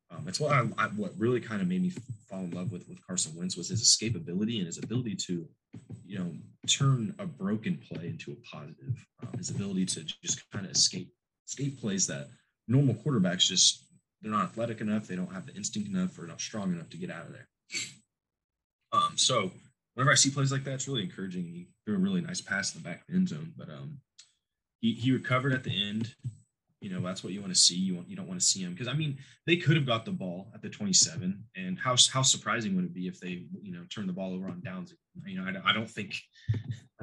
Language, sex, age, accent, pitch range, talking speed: English, male, 20-39, American, 115-185 Hz, 240 wpm